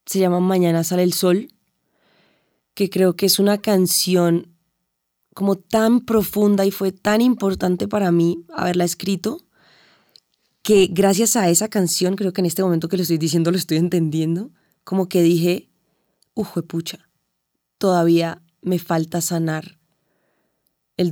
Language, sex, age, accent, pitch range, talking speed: Spanish, female, 20-39, Colombian, 170-200 Hz, 140 wpm